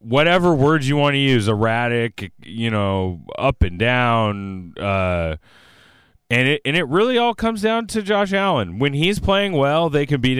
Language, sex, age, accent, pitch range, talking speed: English, male, 30-49, American, 100-135 Hz, 180 wpm